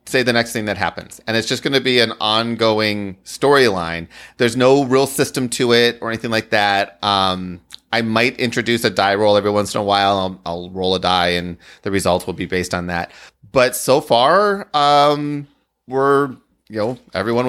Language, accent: English, American